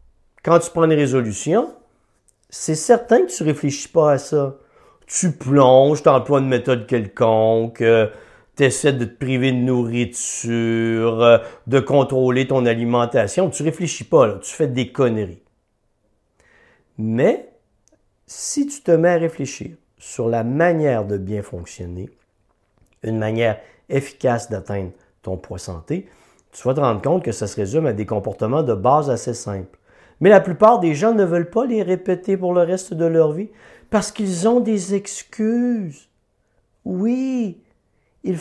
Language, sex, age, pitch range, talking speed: French, male, 50-69, 115-195 Hz, 155 wpm